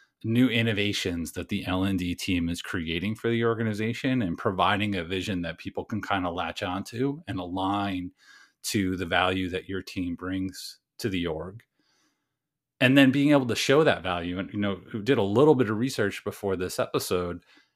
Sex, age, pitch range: male, 30-49, 95-120 Hz